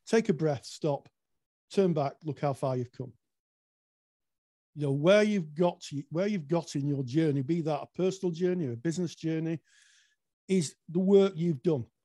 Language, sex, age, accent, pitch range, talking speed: English, male, 50-69, British, 145-190 Hz, 195 wpm